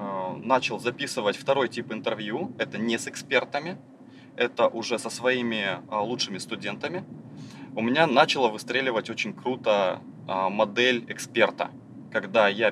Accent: native